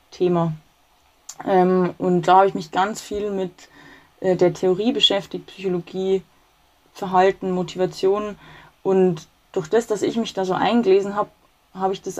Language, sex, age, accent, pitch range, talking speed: German, female, 20-39, German, 185-215 Hz, 150 wpm